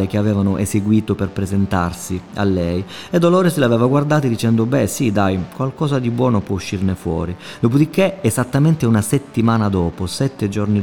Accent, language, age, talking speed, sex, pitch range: native, Italian, 30-49, 160 wpm, male, 100-130 Hz